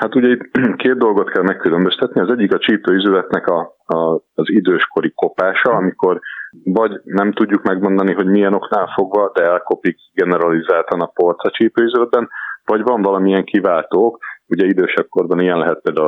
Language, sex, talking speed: Hungarian, male, 145 wpm